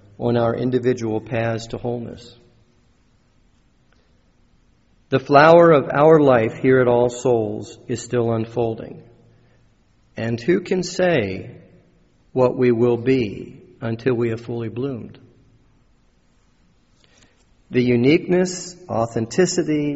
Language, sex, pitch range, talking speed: English, male, 115-140 Hz, 100 wpm